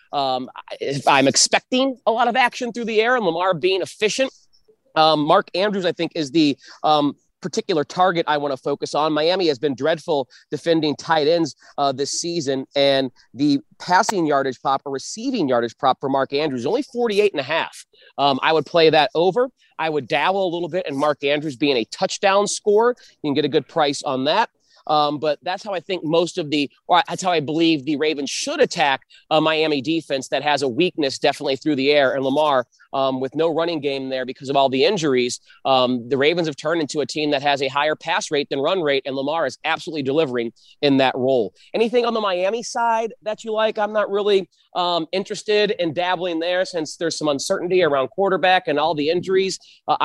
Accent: American